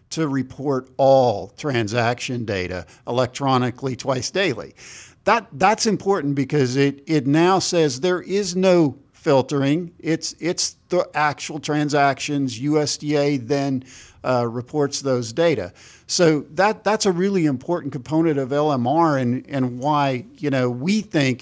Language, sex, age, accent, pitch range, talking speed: English, male, 50-69, American, 125-160 Hz, 130 wpm